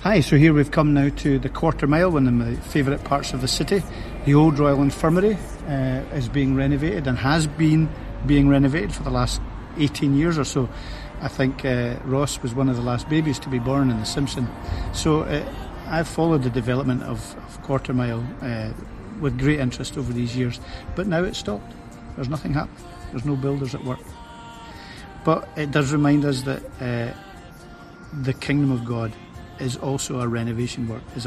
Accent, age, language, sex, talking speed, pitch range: British, 50-69, English, male, 190 wpm, 120-145 Hz